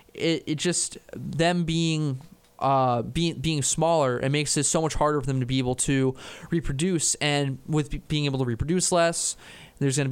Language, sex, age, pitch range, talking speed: English, male, 20-39, 130-165 Hz, 190 wpm